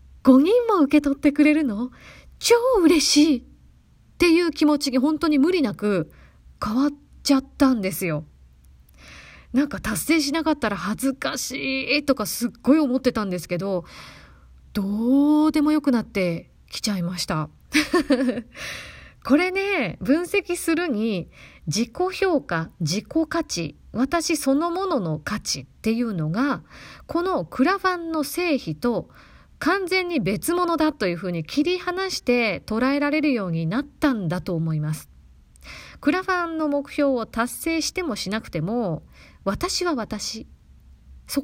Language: Japanese